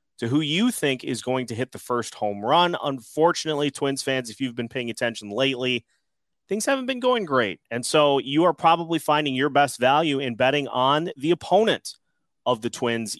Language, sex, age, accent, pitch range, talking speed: English, male, 30-49, American, 125-170 Hz, 195 wpm